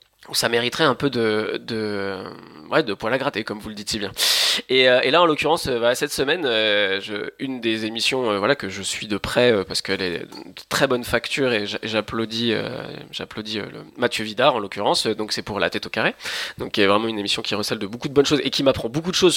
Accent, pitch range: French, 110-140 Hz